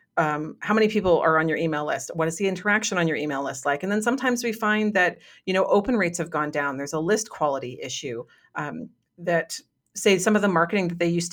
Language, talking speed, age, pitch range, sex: English, 245 wpm, 40-59, 165-205 Hz, female